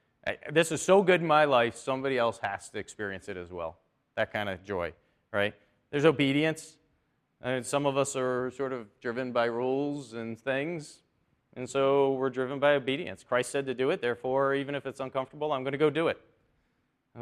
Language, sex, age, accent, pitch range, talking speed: English, male, 30-49, American, 115-140 Hz, 210 wpm